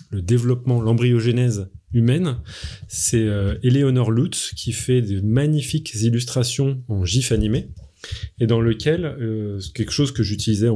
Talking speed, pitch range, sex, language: 140 wpm, 105-140 Hz, male, French